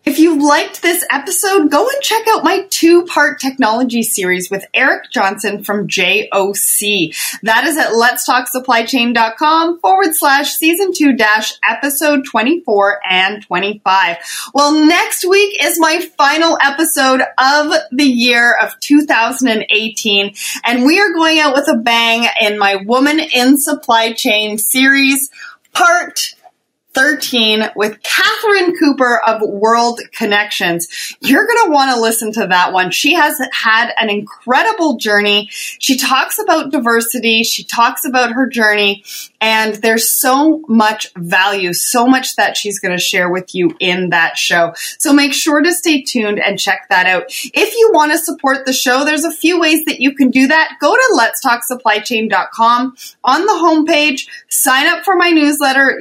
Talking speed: 155 wpm